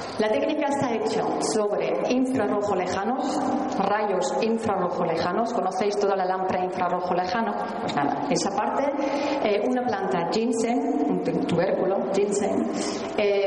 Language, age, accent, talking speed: Spanish, 40-59, Spanish, 120 wpm